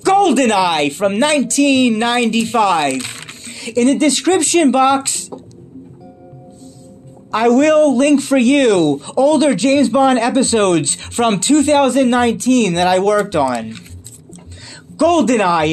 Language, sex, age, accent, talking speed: English, male, 30-49, American, 90 wpm